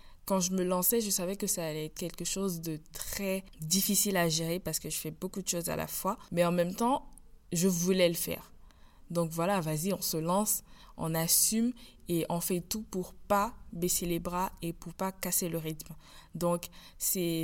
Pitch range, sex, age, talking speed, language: 170-200 Hz, female, 20-39, 215 wpm, French